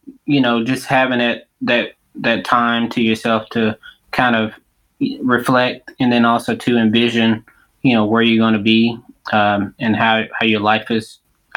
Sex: male